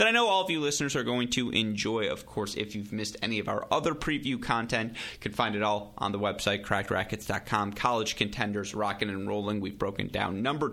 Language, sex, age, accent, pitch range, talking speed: English, male, 30-49, American, 100-120 Hz, 225 wpm